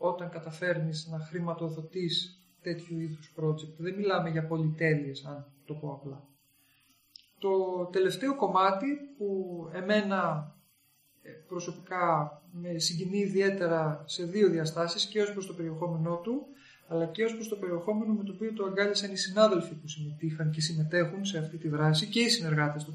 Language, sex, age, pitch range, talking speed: Greek, male, 40-59, 155-200 Hz, 150 wpm